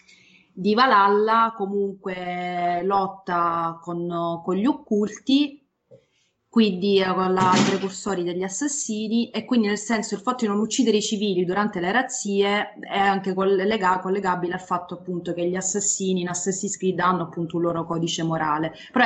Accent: native